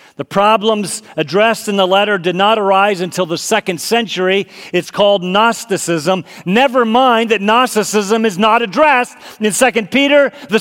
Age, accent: 40-59, American